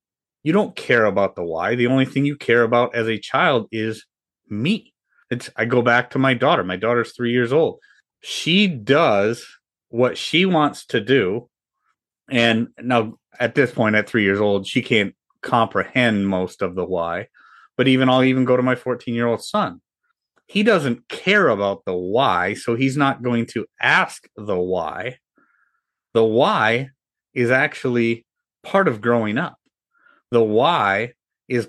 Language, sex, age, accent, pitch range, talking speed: English, male, 30-49, American, 110-140 Hz, 160 wpm